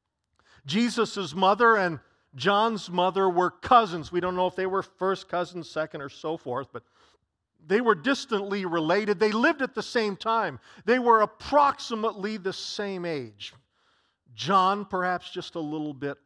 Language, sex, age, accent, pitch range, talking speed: English, male, 50-69, American, 175-225 Hz, 155 wpm